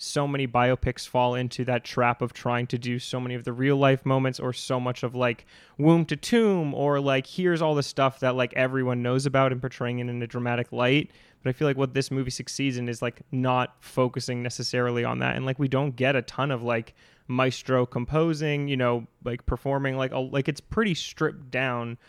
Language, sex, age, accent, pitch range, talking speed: English, male, 20-39, American, 120-135 Hz, 225 wpm